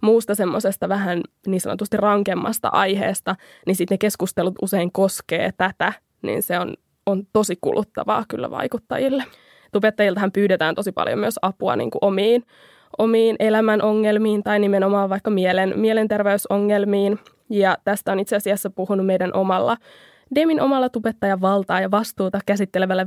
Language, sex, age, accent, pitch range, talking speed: Finnish, female, 20-39, native, 195-220 Hz, 140 wpm